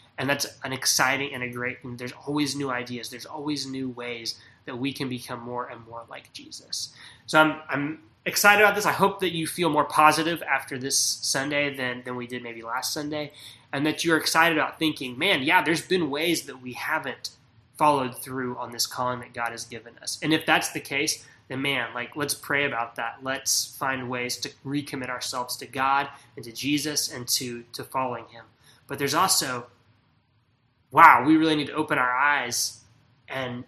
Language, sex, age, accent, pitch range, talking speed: English, male, 20-39, American, 120-145 Hz, 200 wpm